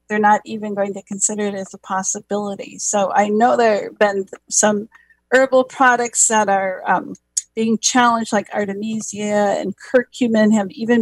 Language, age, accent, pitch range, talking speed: English, 50-69, American, 200-240 Hz, 165 wpm